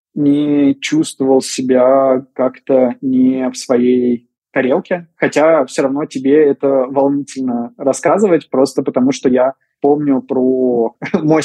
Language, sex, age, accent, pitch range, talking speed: Russian, male, 20-39, native, 135-155 Hz, 115 wpm